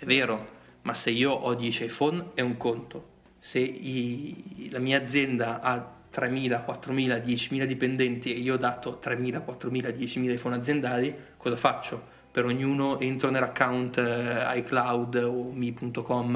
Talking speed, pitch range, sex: 145 wpm, 125-135 Hz, male